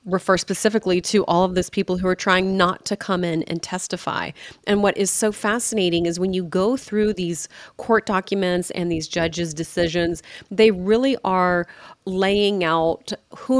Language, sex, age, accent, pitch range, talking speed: English, female, 30-49, American, 170-200 Hz, 170 wpm